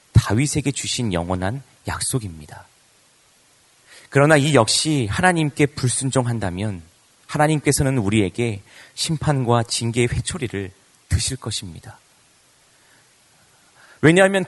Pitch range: 105-140 Hz